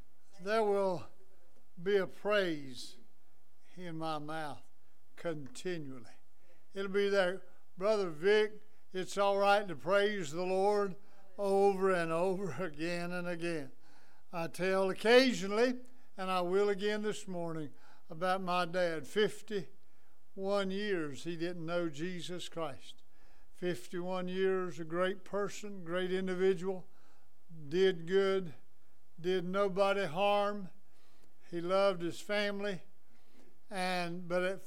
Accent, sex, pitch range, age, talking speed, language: American, male, 170-200 Hz, 60-79, 115 wpm, English